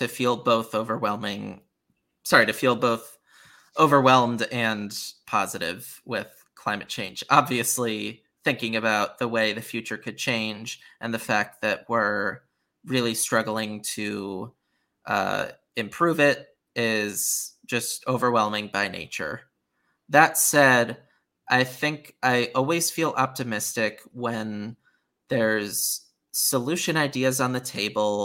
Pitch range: 110-140 Hz